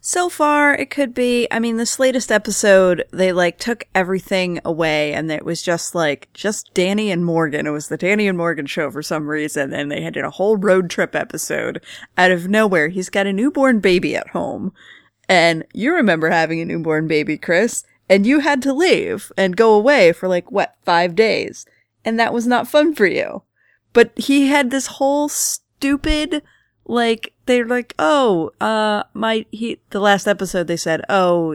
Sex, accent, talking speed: female, American, 190 wpm